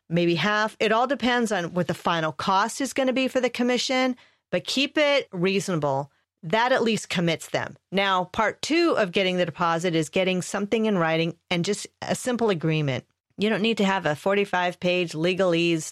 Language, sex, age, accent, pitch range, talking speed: English, female, 40-59, American, 170-230 Hz, 190 wpm